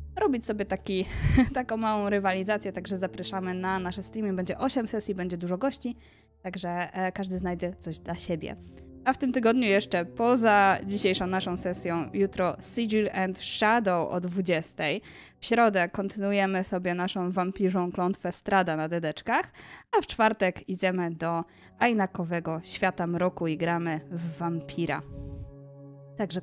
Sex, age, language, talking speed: female, 20-39, Polish, 140 wpm